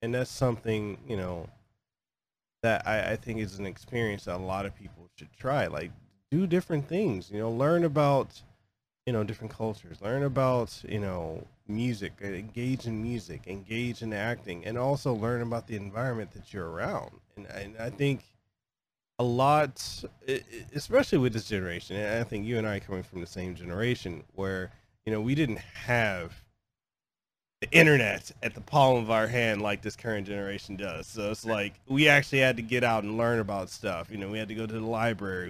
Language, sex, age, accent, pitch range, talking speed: English, male, 20-39, American, 100-120 Hz, 190 wpm